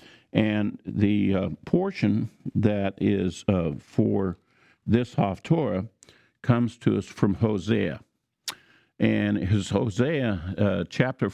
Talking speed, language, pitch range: 110 wpm, English, 95-125 Hz